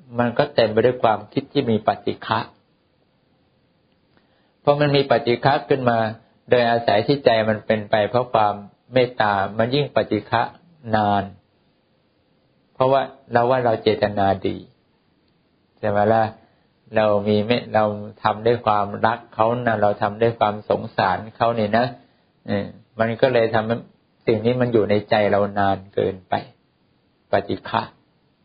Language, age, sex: English, 60-79, male